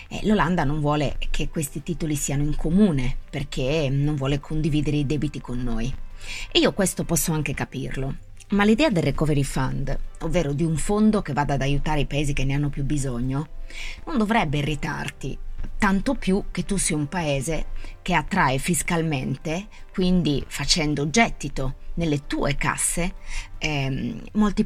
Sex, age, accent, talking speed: female, 30-49, native, 155 wpm